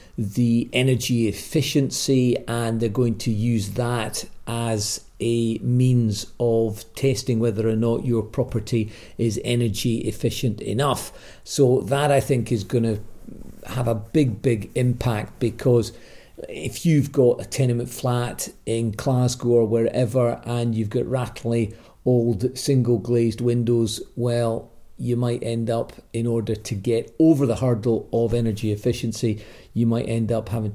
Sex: male